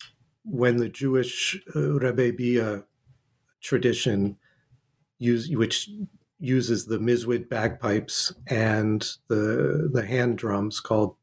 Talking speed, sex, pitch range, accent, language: 100 wpm, male, 110-135 Hz, American, English